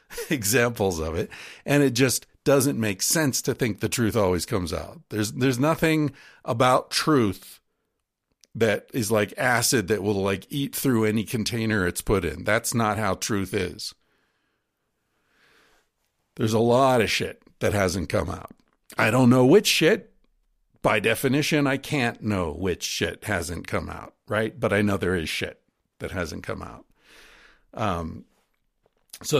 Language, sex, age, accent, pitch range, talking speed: English, male, 60-79, American, 110-150 Hz, 155 wpm